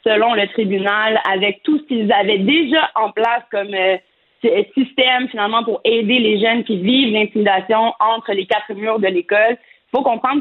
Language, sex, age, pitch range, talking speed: French, female, 30-49, 210-250 Hz, 180 wpm